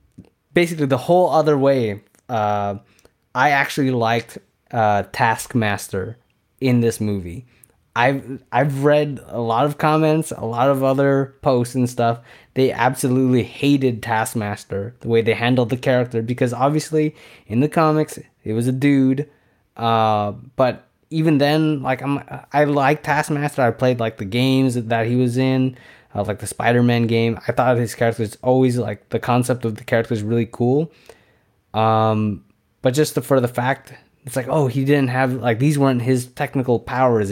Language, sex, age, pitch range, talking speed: English, male, 20-39, 115-135 Hz, 170 wpm